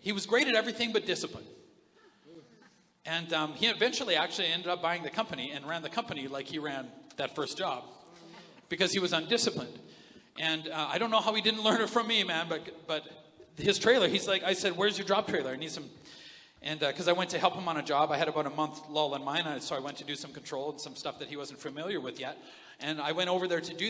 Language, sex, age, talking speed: English, male, 40-59, 255 wpm